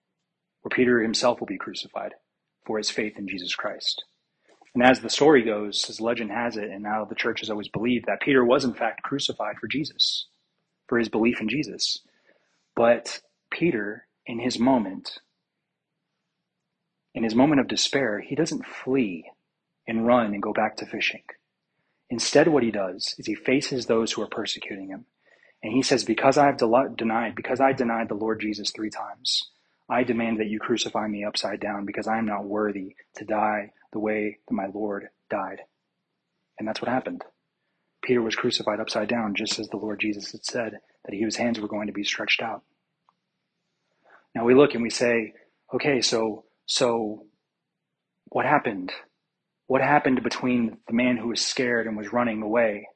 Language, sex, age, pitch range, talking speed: English, male, 30-49, 105-125 Hz, 180 wpm